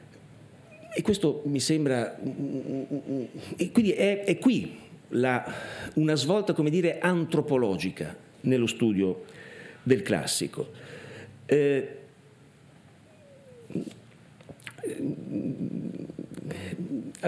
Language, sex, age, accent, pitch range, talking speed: Italian, male, 50-69, native, 100-155 Hz, 70 wpm